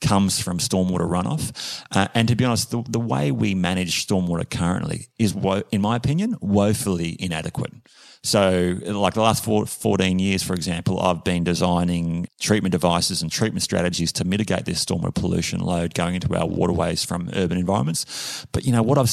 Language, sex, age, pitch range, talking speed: English, male, 30-49, 85-105 Hz, 180 wpm